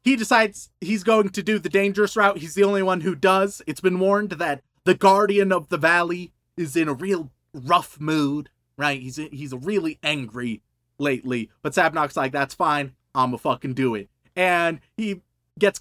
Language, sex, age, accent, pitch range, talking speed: English, male, 30-49, American, 150-210 Hz, 180 wpm